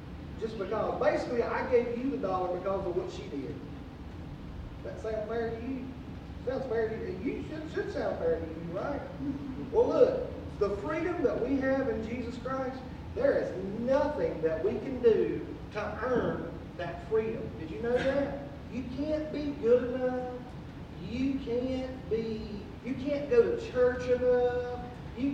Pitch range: 230-280 Hz